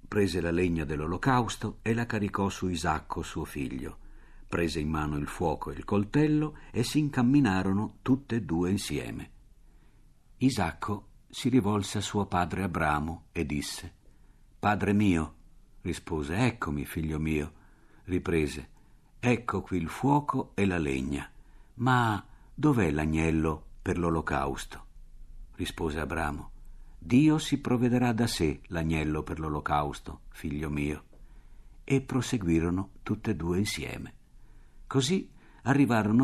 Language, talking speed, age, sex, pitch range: Italian, 125 wpm, 60-79, male, 80-125 Hz